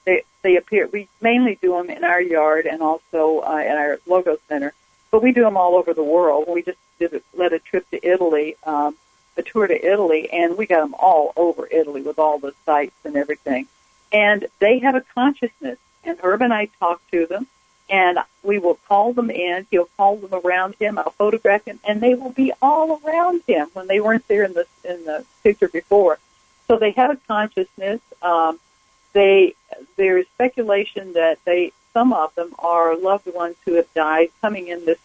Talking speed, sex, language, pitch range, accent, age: 200 wpm, female, English, 170-235 Hz, American, 60-79